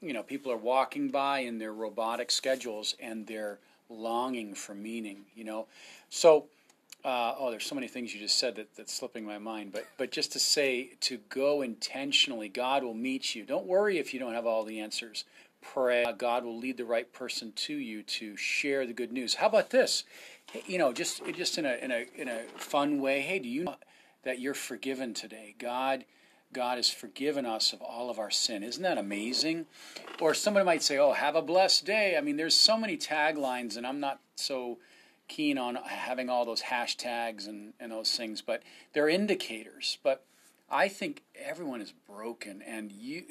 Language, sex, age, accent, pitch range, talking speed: English, male, 40-59, American, 115-160 Hz, 200 wpm